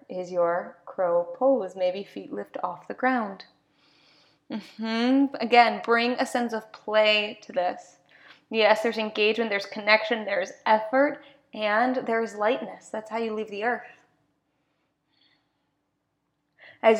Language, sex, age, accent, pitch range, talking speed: English, female, 20-39, American, 210-270 Hz, 130 wpm